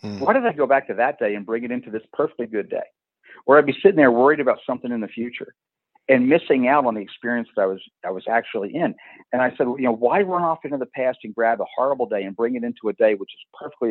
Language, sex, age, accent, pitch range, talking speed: English, male, 50-69, American, 110-135 Hz, 280 wpm